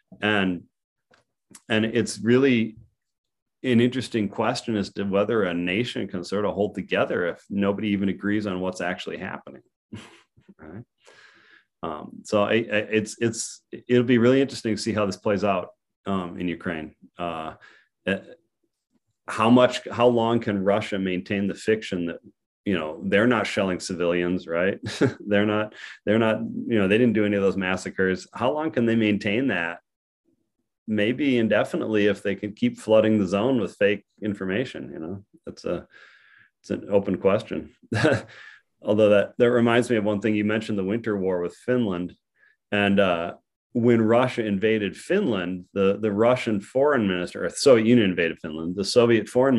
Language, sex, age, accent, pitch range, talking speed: English, male, 30-49, American, 95-115 Hz, 165 wpm